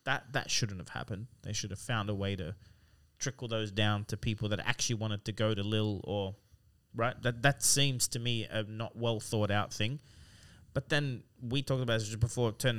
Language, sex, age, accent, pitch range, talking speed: English, male, 30-49, Australian, 105-125 Hz, 210 wpm